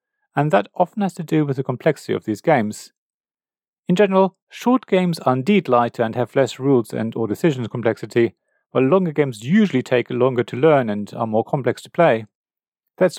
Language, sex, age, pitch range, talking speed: English, male, 40-59, 130-195 Hz, 190 wpm